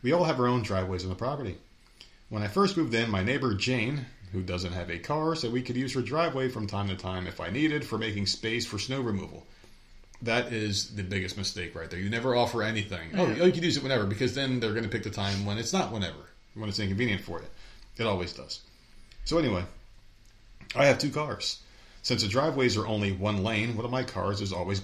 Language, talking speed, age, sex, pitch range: English, 235 wpm, 30-49, male, 95-125 Hz